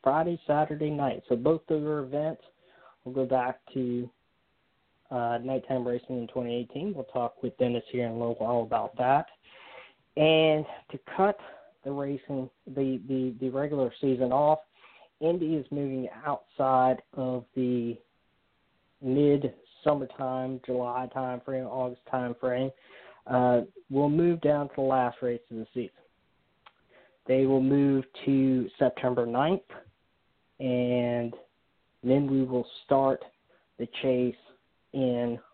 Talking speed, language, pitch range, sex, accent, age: 125 wpm, English, 120-140 Hz, male, American, 20-39